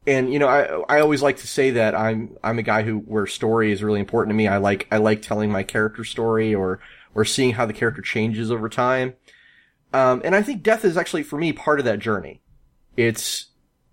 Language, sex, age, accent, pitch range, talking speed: English, male, 30-49, American, 110-150 Hz, 230 wpm